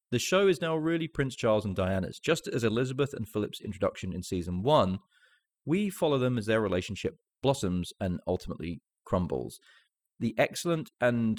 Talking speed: 165 wpm